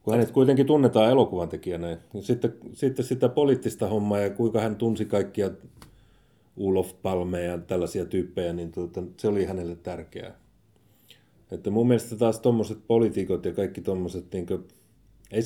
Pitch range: 85-115 Hz